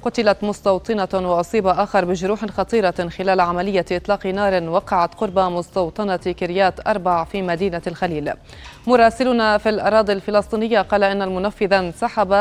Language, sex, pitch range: Arabic, female, 180-210 Hz